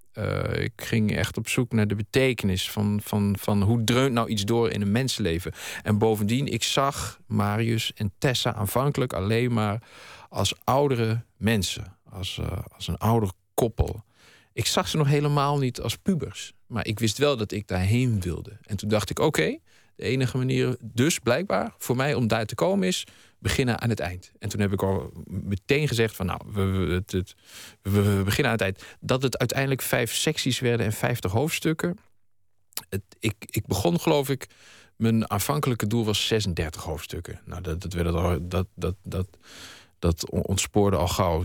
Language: Dutch